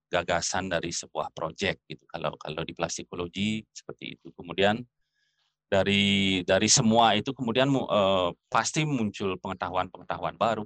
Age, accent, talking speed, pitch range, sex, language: 30-49, native, 130 wpm, 90-105 Hz, male, Indonesian